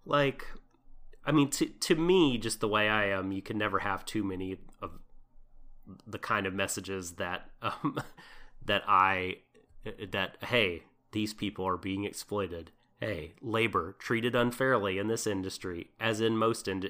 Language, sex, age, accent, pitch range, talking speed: English, male, 30-49, American, 95-115 Hz, 155 wpm